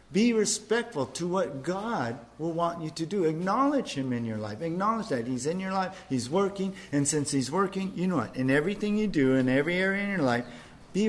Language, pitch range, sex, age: English, 140-200 Hz, male, 50-69